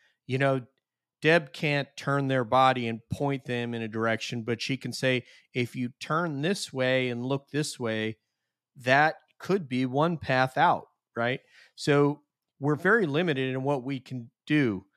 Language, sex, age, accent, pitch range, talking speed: English, male, 40-59, American, 115-130 Hz, 170 wpm